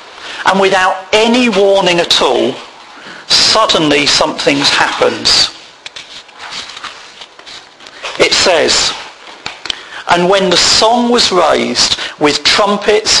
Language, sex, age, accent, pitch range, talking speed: English, male, 50-69, British, 175-240 Hz, 85 wpm